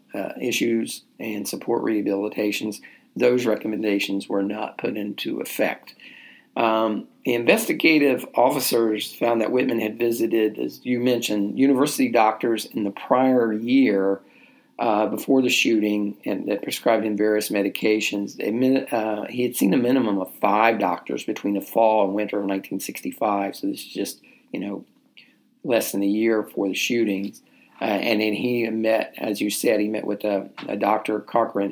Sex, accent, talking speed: male, American, 160 wpm